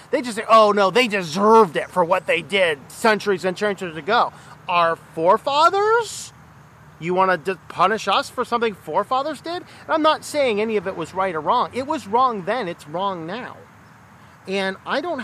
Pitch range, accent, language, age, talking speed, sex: 190-245 Hz, American, English, 40-59, 185 wpm, male